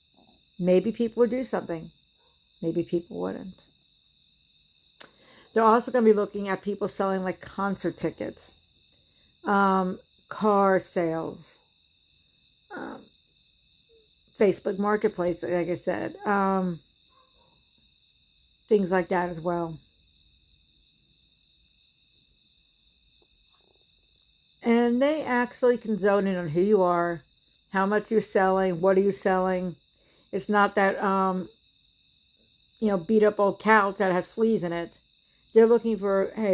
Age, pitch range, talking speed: 60-79, 175-210 Hz, 120 wpm